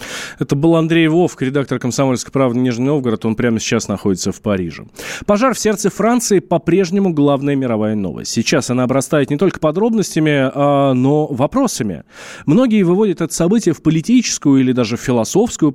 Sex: male